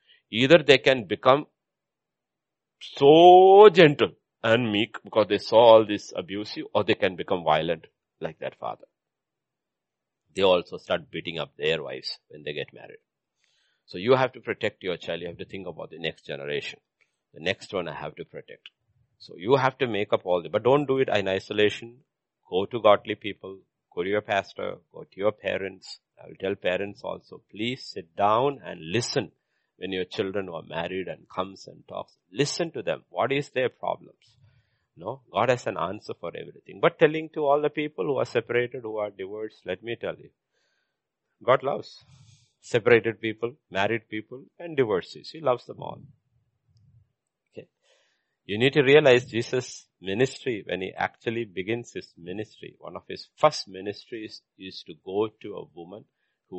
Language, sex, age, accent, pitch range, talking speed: English, male, 50-69, Indian, 105-140 Hz, 175 wpm